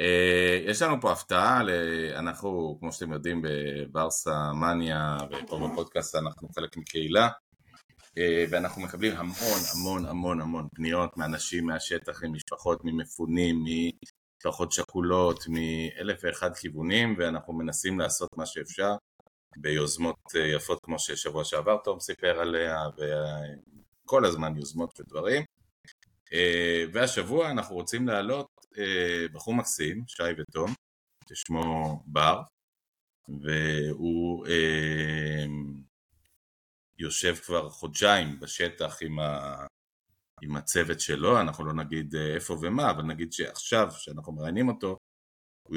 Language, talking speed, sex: Hebrew, 105 wpm, male